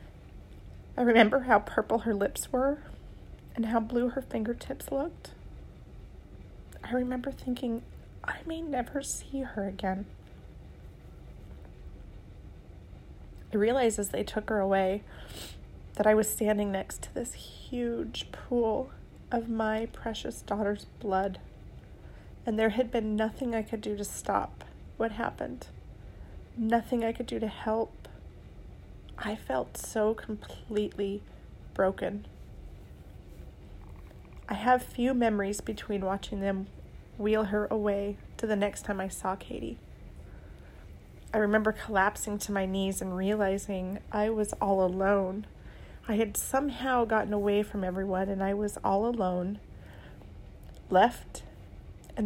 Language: English